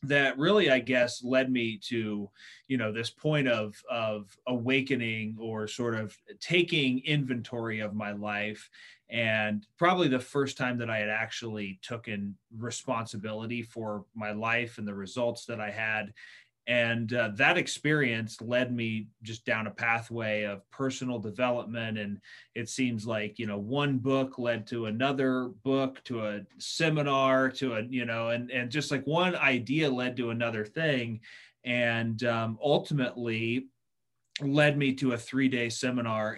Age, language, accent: 30-49, English, American